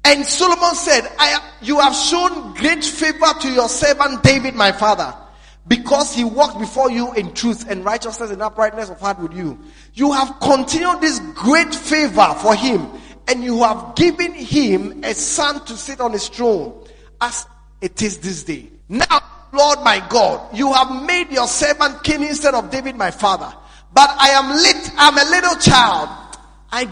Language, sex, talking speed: English, male, 175 wpm